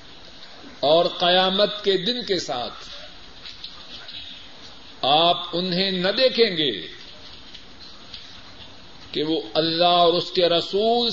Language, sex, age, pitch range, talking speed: Urdu, male, 50-69, 175-255 Hz, 95 wpm